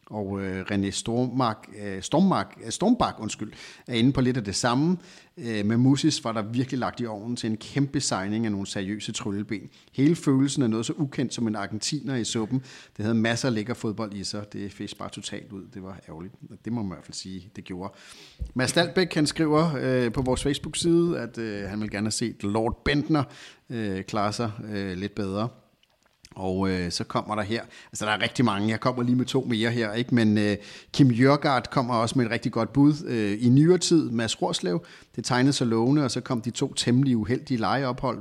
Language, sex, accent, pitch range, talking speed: Danish, male, native, 100-130 Hz, 205 wpm